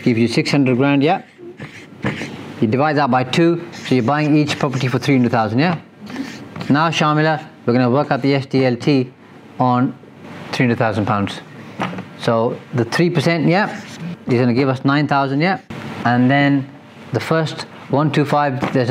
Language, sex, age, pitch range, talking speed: English, male, 30-49, 125-150 Hz, 145 wpm